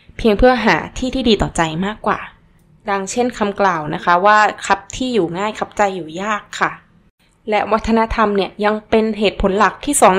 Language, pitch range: Thai, 180-220 Hz